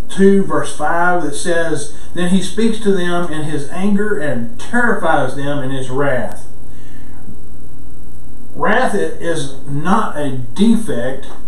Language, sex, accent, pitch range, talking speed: English, male, American, 140-195 Hz, 125 wpm